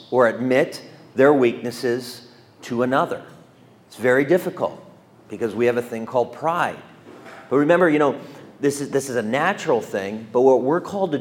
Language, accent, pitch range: English, American, 120-140 Hz